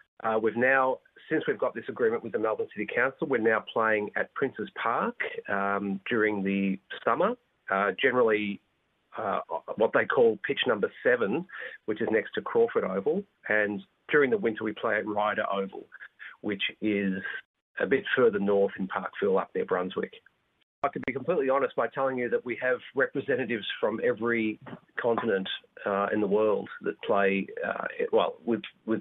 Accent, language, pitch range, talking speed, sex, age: Australian, English, 105-140 Hz, 170 wpm, male, 40-59